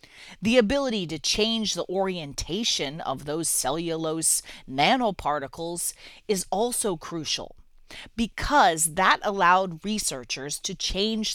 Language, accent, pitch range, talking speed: English, American, 160-235 Hz, 100 wpm